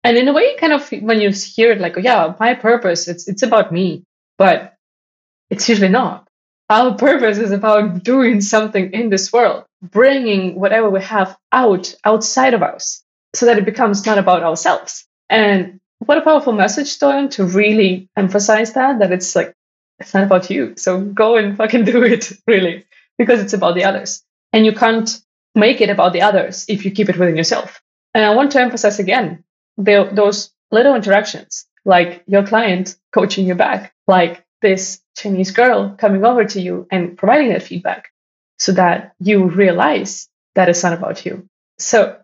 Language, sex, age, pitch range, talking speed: English, female, 20-39, 190-235 Hz, 180 wpm